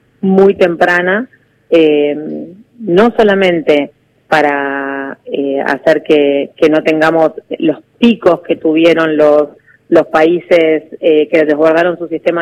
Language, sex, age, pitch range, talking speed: Spanish, female, 30-49, 155-175 Hz, 115 wpm